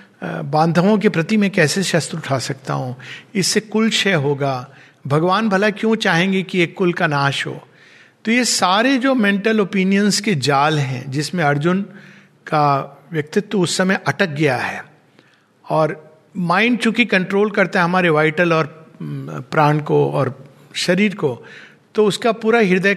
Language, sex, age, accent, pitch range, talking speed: Hindi, male, 50-69, native, 155-210 Hz, 155 wpm